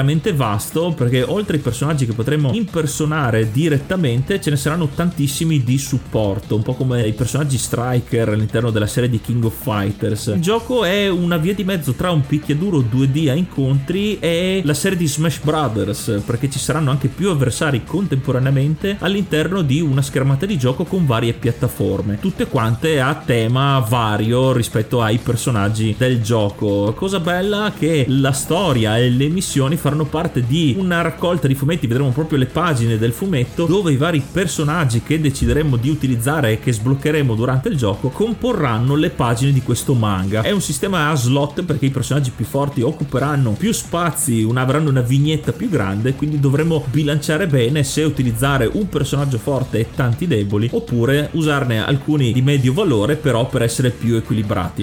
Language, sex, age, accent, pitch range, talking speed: Italian, male, 30-49, native, 120-160 Hz, 170 wpm